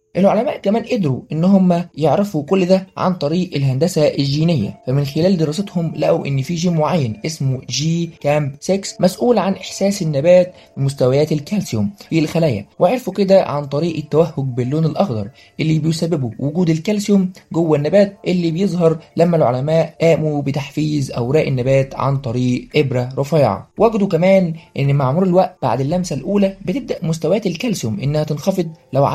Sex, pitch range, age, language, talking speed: male, 140-185 Hz, 20-39, Arabic, 145 wpm